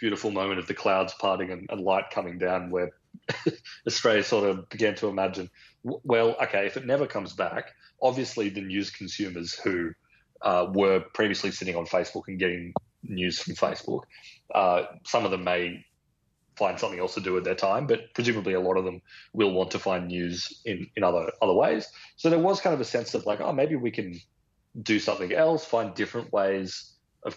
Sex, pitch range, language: male, 90-105 Hz, English